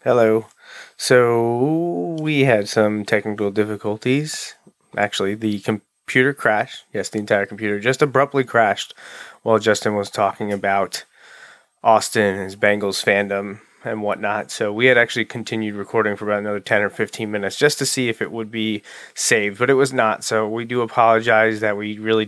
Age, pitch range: 20-39, 105-125 Hz